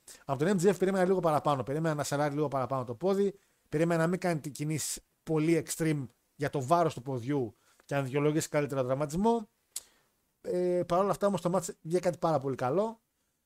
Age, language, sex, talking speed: 50-69, Greek, male, 190 wpm